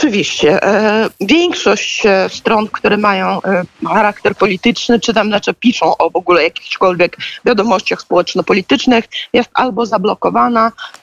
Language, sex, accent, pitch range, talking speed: Polish, female, native, 195-260 Hz, 110 wpm